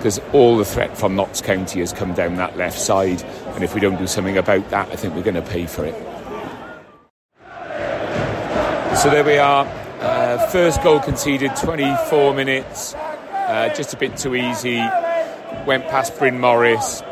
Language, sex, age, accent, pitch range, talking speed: English, male, 30-49, British, 100-125 Hz, 170 wpm